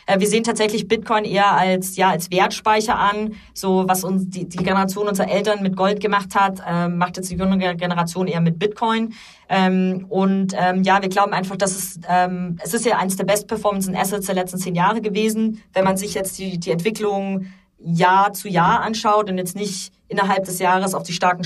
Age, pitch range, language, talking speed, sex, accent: 20-39, 180-200 Hz, German, 200 wpm, female, German